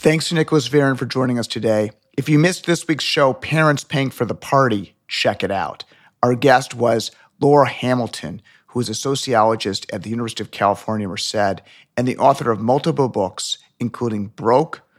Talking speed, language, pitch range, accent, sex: 180 wpm, English, 110-140 Hz, American, male